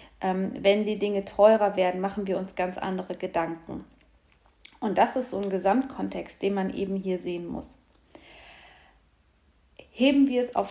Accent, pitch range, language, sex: German, 185-230 Hz, German, female